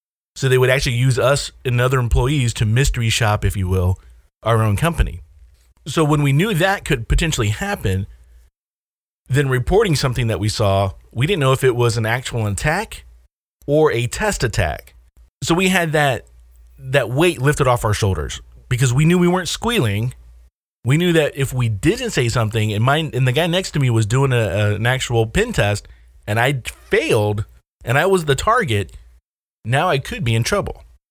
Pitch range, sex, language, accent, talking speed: 95-140 Hz, male, English, American, 190 wpm